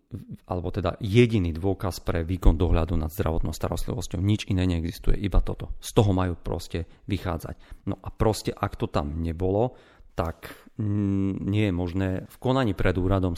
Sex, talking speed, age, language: male, 155 wpm, 40-59, Slovak